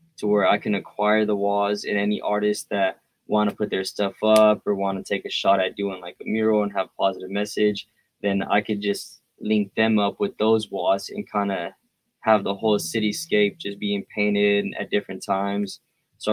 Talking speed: 210 wpm